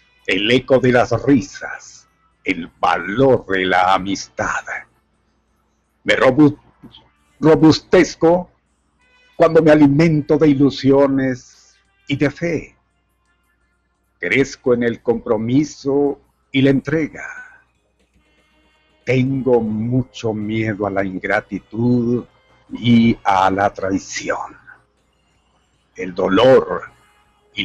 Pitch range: 110-155 Hz